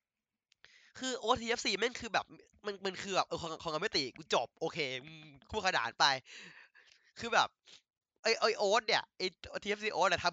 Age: 20-39